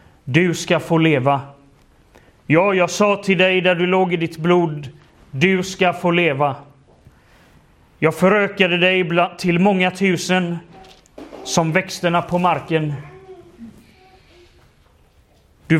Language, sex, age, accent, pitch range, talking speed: English, male, 30-49, Swedish, 155-185 Hz, 115 wpm